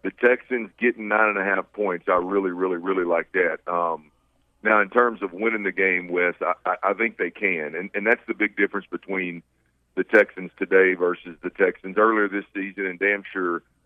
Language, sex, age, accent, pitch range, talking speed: English, male, 50-69, American, 90-105 Hz, 210 wpm